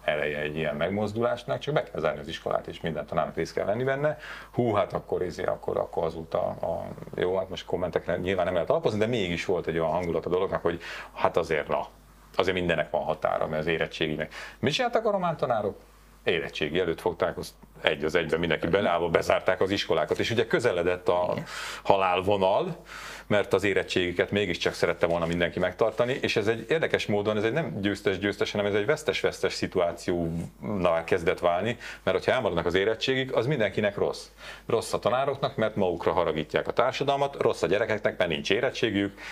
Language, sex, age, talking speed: Hungarian, male, 40-59, 190 wpm